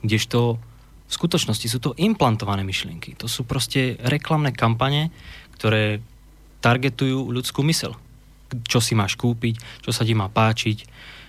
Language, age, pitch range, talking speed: Slovak, 20-39, 110-130 Hz, 135 wpm